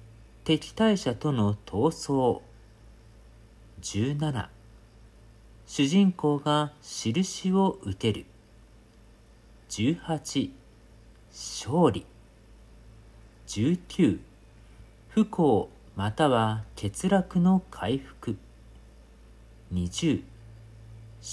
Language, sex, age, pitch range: Japanese, male, 50-69, 110-140 Hz